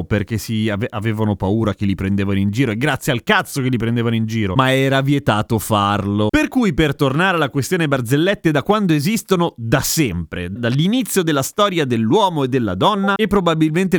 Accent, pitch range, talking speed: native, 115-165 Hz, 190 wpm